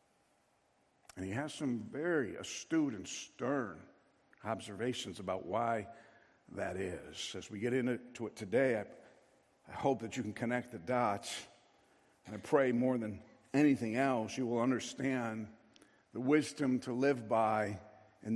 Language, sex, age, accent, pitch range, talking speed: English, male, 60-79, American, 120-145 Hz, 145 wpm